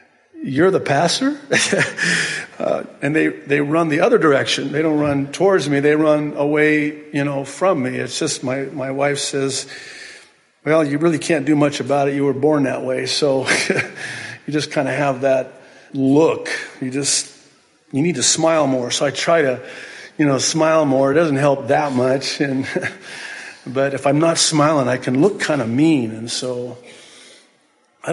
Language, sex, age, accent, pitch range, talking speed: English, male, 50-69, American, 120-150 Hz, 180 wpm